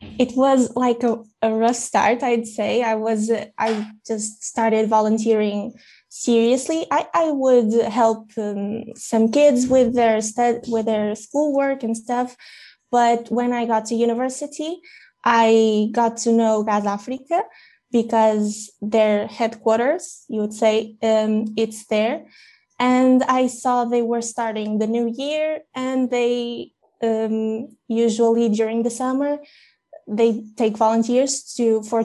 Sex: female